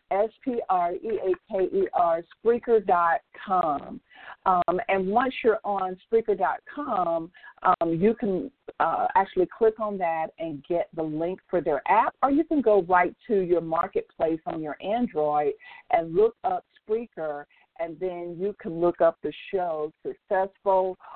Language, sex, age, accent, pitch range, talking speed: English, female, 50-69, American, 165-230 Hz, 130 wpm